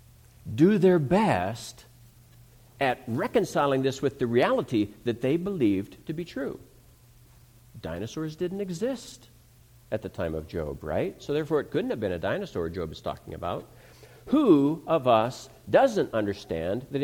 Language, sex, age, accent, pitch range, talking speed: English, male, 50-69, American, 120-170 Hz, 150 wpm